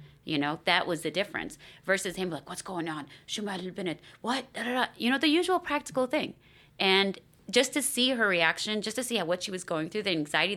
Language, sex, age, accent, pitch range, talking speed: English, female, 30-49, American, 155-205 Hz, 240 wpm